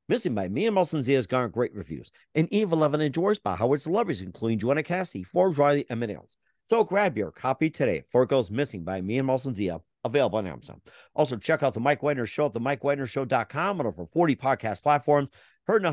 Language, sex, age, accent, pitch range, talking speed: English, male, 50-69, American, 130-155 Hz, 220 wpm